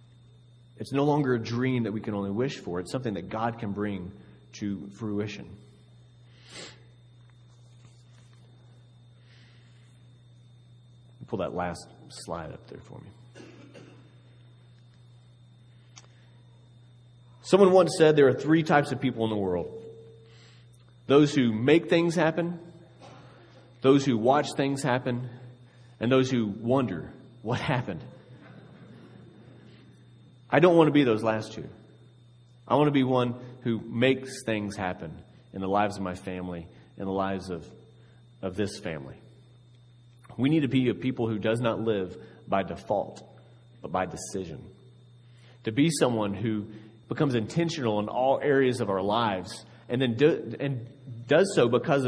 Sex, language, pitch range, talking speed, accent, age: male, English, 110-125 Hz, 135 wpm, American, 30-49